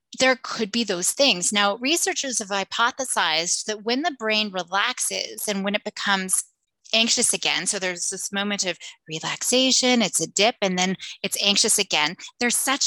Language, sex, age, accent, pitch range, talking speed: English, female, 20-39, American, 190-245 Hz, 170 wpm